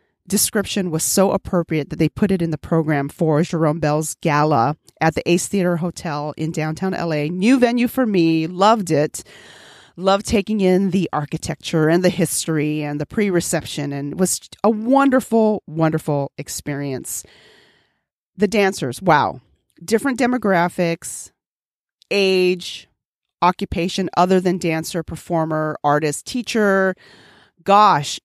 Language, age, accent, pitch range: English, 40-59, American, 155-205 Hz